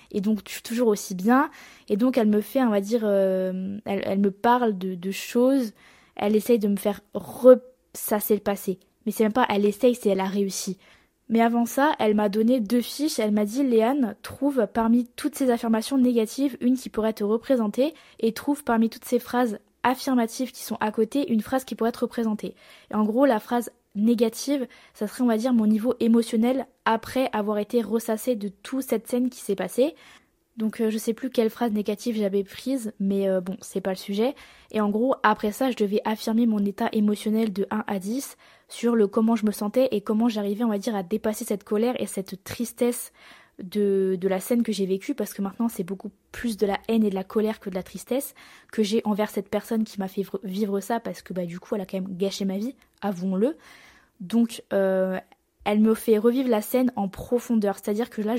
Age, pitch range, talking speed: 20-39, 205-245 Hz, 220 wpm